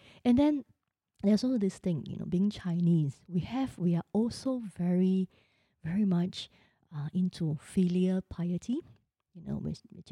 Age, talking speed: 20-39, 155 wpm